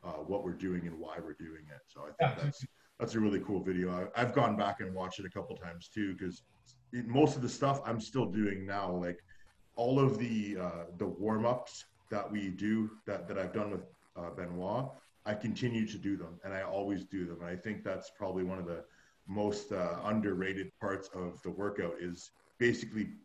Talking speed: 210 wpm